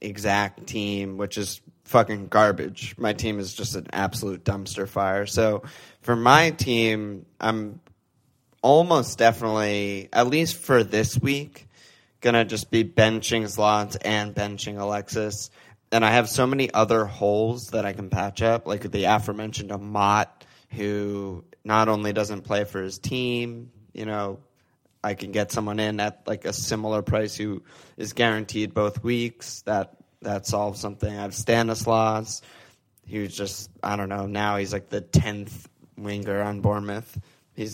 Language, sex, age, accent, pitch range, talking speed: English, male, 20-39, American, 105-115 Hz, 155 wpm